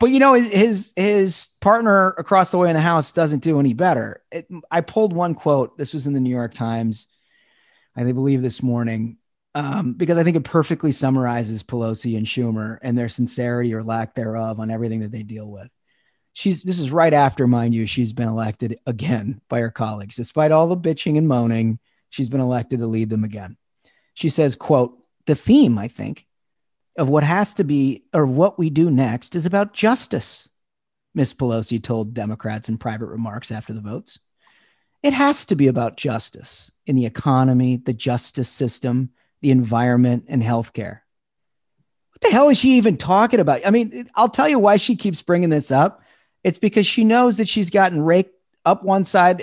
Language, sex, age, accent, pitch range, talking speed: English, male, 30-49, American, 120-180 Hz, 190 wpm